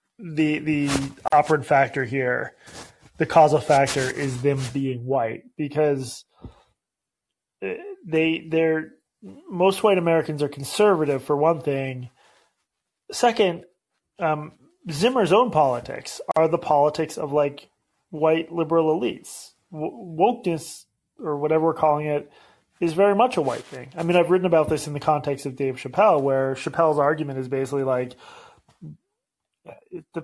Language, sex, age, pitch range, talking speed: English, male, 30-49, 145-175 Hz, 135 wpm